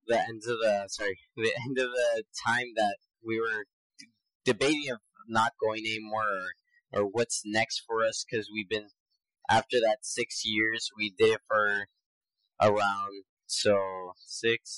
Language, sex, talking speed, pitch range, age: English, male, 155 wpm, 105-125 Hz, 20-39